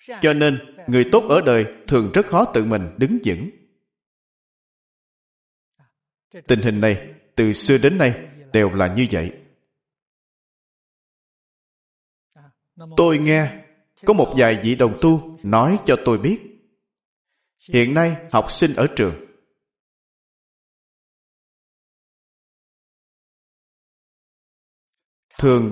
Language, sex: Vietnamese, male